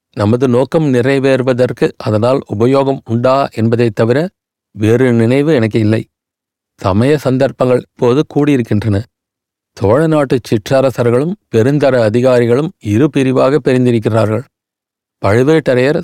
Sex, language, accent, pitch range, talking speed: male, Tamil, native, 115-140 Hz, 95 wpm